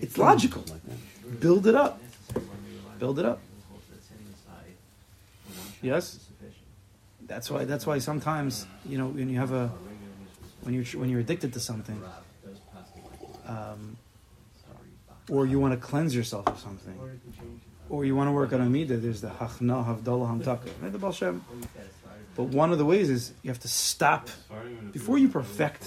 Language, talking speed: English, 135 wpm